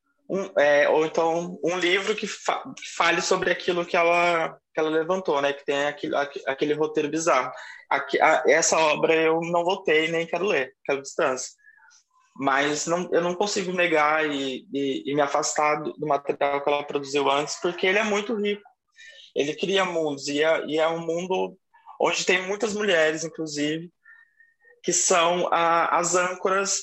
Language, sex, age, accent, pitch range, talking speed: Portuguese, male, 20-39, Brazilian, 145-190 Hz, 175 wpm